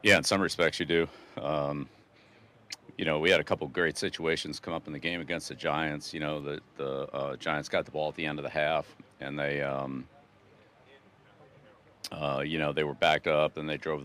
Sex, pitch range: male, 70-75 Hz